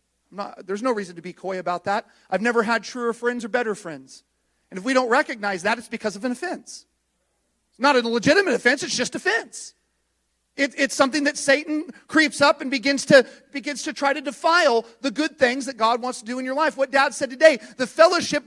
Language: English